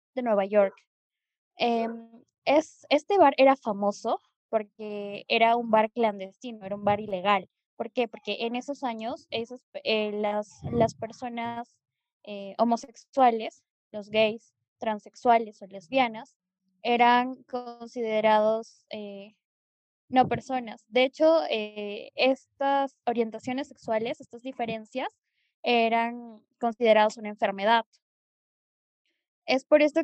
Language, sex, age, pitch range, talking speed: Spanish, female, 10-29, 210-245 Hz, 110 wpm